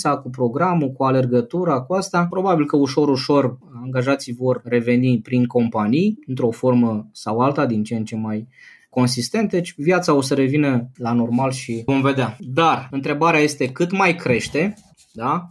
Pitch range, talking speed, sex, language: 125-180 Hz, 165 wpm, male, Romanian